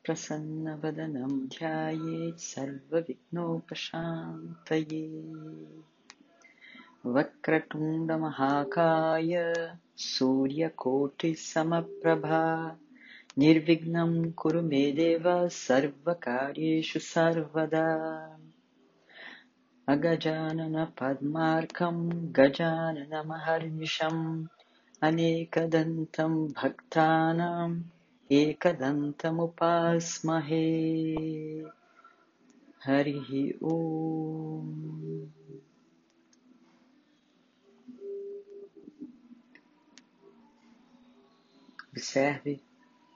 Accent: Indian